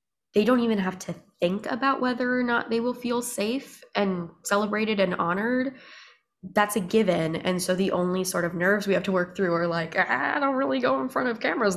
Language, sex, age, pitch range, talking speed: English, female, 20-39, 175-225 Hz, 225 wpm